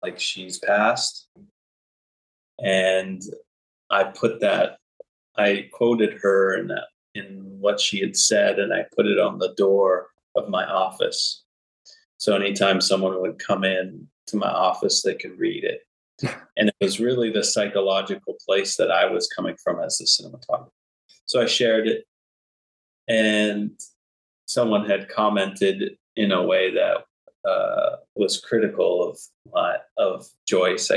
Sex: male